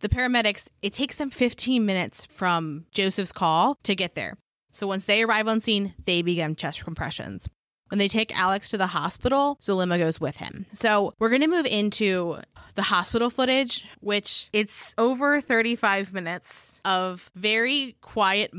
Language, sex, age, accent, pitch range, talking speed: English, female, 20-39, American, 180-225 Hz, 165 wpm